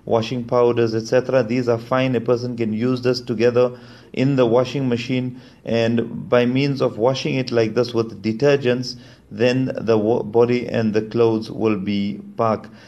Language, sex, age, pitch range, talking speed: English, male, 30-49, 110-125 Hz, 165 wpm